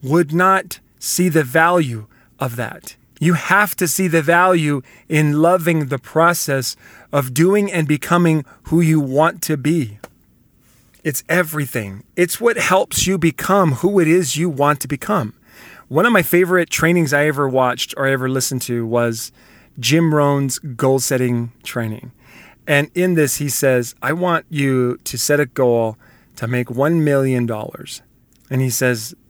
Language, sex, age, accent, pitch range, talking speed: English, male, 40-59, American, 125-160 Hz, 155 wpm